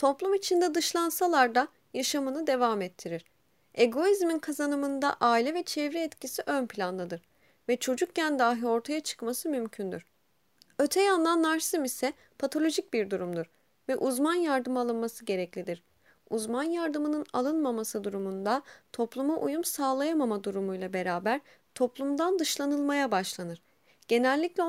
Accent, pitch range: native, 220-295 Hz